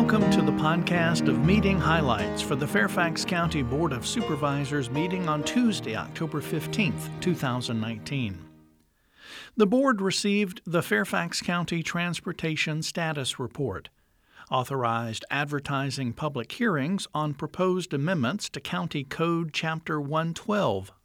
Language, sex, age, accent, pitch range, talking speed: English, male, 60-79, American, 130-185 Hz, 115 wpm